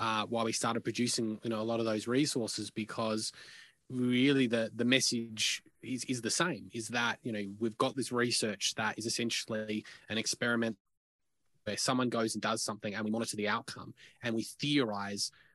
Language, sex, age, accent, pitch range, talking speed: English, male, 20-39, Australian, 110-120 Hz, 185 wpm